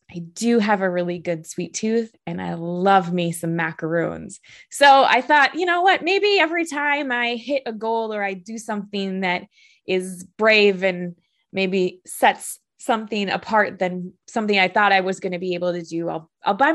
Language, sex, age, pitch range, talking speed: English, female, 20-39, 175-225 Hz, 195 wpm